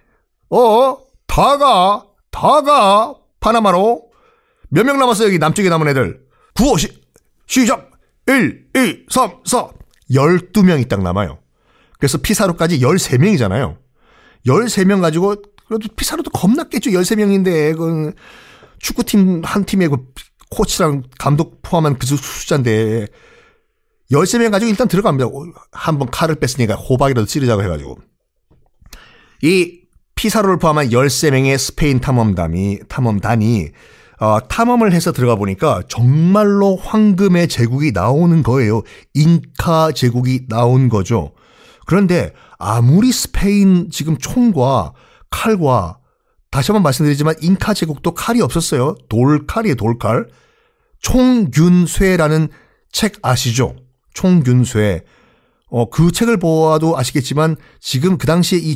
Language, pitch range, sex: Korean, 125-200 Hz, male